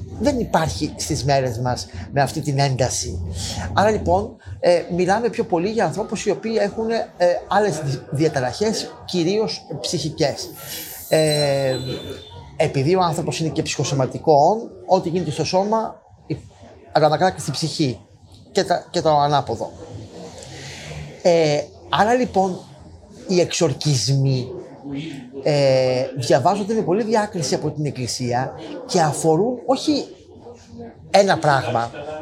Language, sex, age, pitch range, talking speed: Greek, male, 30-49, 140-195 Hz, 110 wpm